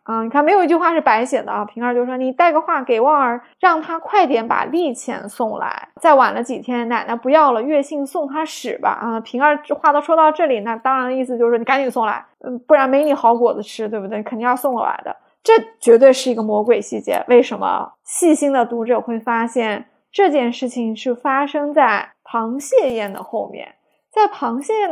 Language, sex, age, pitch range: Chinese, female, 20-39, 235-310 Hz